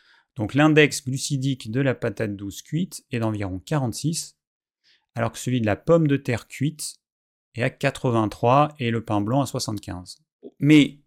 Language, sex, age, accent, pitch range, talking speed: French, male, 30-49, French, 115-150 Hz, 165 wpm